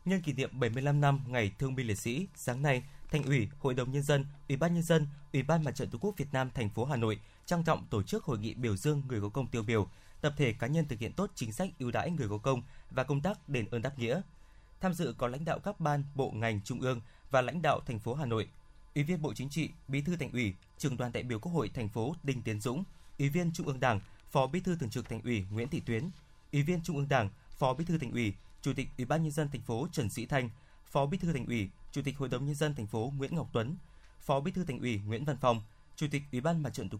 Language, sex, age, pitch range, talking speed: Vietnamese, male, 20-39, 115-150 Hz, 285 wpm